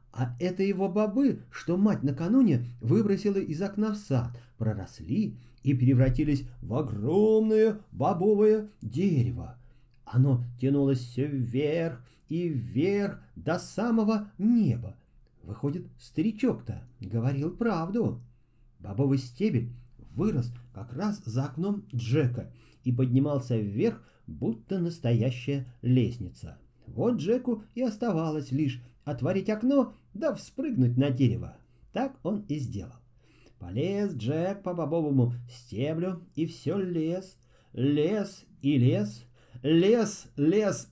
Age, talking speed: 40-59, 105 wpm